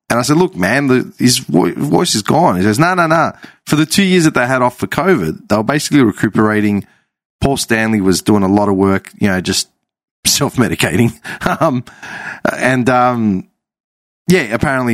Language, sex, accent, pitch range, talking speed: English, male, Australian, 100-140 Hz, 190 wpm